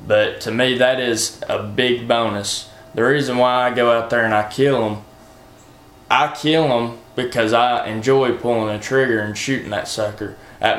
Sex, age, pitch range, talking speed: male, 20-39, 110-125 Hz, 185 wpm